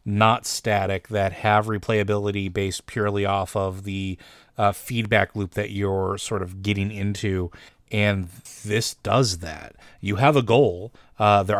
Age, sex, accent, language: 30-49, male, American, English